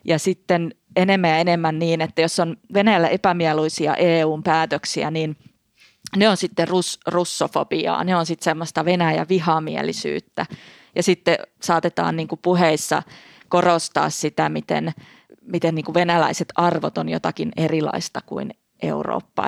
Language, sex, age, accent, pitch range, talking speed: Finnish, female, 20-39, native, 160-190 Hz, 130 wpm